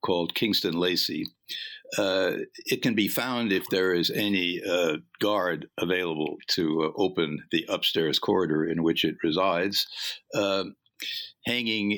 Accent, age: American, 60-79